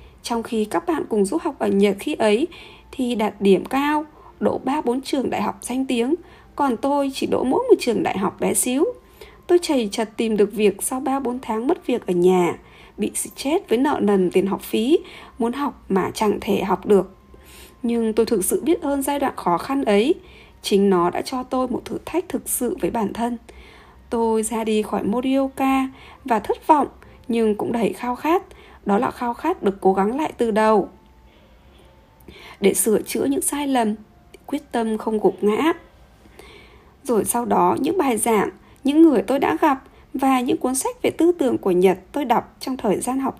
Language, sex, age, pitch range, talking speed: Vietnamese, female, 20-39, 210-295 Hz, 205 wpm